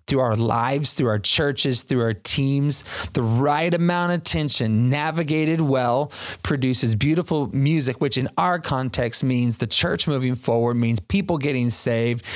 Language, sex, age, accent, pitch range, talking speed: English, male, 30-49, American, 120-155 Hz, 155 wpm